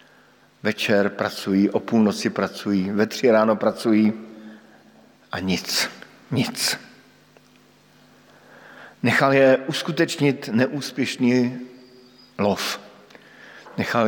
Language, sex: Slovak, male